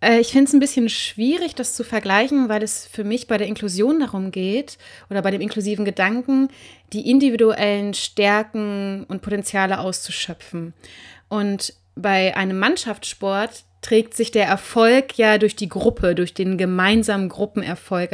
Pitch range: 195-240 Hz